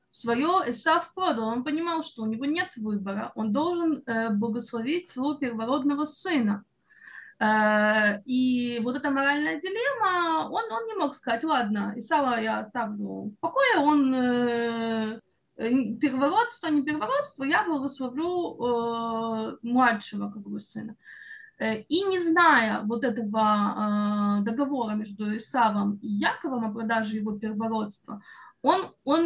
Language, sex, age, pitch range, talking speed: Russian, female, 20-39, 220-300 Hz, 130 wpm